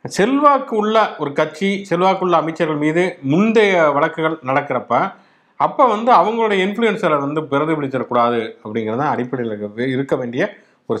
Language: English